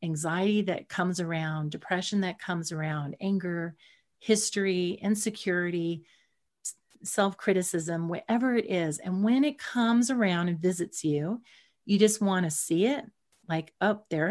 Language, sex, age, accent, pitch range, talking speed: English, female, 40-59, American, 170-210 Hz, 135 wpm